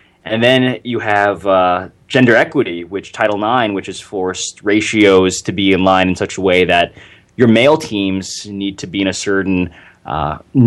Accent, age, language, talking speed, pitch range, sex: American, 20-39, English, 185 wpm, 95-115 Hz, male